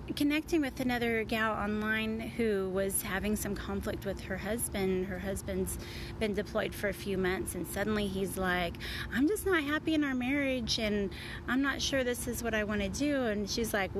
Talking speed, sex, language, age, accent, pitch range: 195 wpm, female, English, 30-49, American, 200-260 Hz